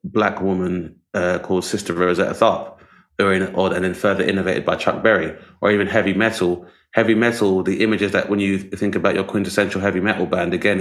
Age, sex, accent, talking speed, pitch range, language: 20-39, male, British, 190 wpm, 95-110 Hz, English